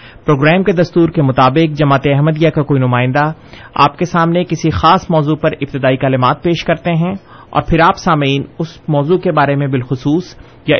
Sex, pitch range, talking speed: male, 140-170 Hz, 185 wpm